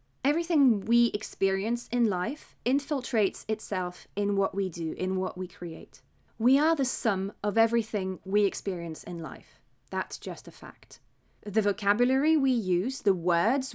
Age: 20-39